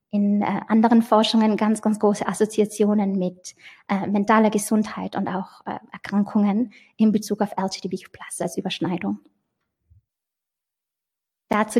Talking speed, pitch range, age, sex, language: 115 wpm, 200-255 Hz, 20-39, female, German